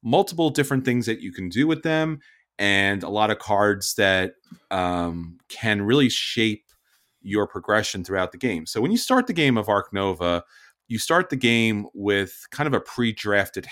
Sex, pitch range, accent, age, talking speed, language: male, 95-120 Hz, American, 30-49, 185 wpm, English